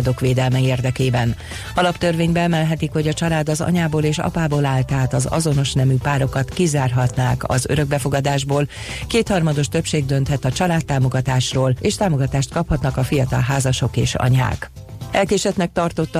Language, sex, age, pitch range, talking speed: Hungarian, female, 40-59, 130-160 Hz, 130 wpm